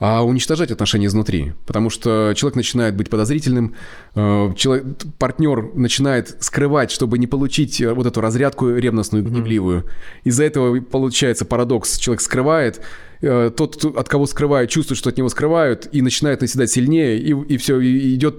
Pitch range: 110-140 Hz